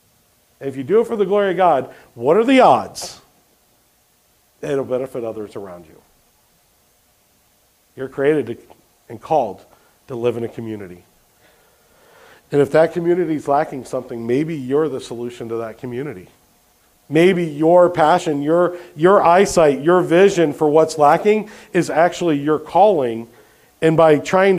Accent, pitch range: American, 120-175 Hz